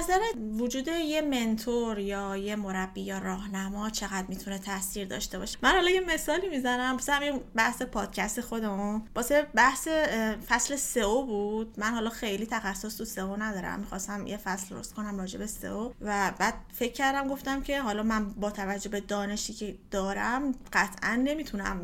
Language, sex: Persian, female